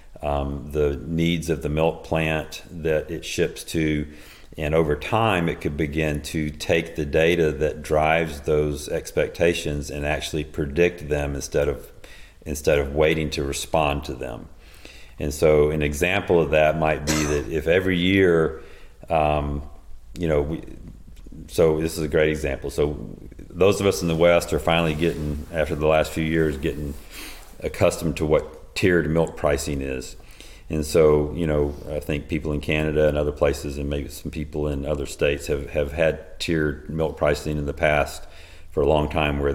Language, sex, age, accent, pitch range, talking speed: English, male, 40-59, American, 75-80 Hz, 175 wpm